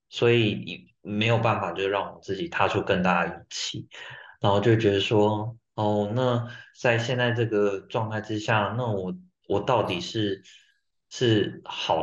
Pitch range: 105-125 Hz